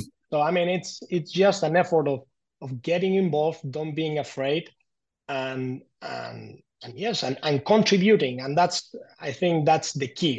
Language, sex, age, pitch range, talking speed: English, male, 30-49, 130-165 Hz, 170 wpm